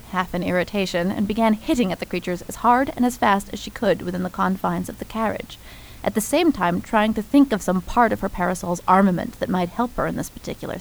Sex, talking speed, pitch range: female, 245 wpm, 180-235 Hz